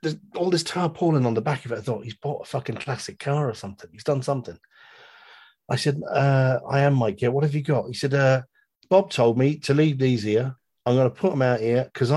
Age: 40-59